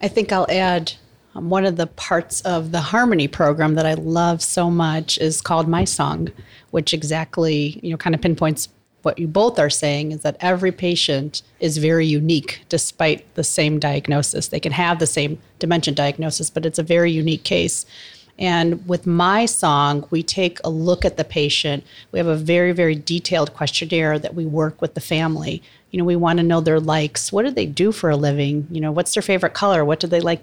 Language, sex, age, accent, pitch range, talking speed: English, female, 40-59, American, 155-180 Hz, 210 wpm